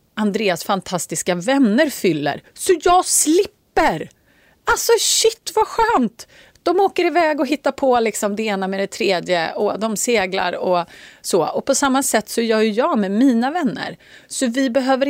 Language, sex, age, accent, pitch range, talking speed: Swedish, female, 30-49, native, 170-260 Hz, 165 wpm